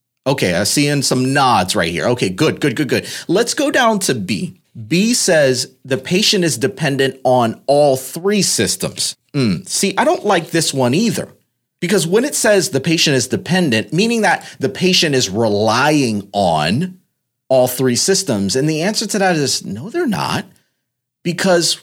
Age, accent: 30-49, American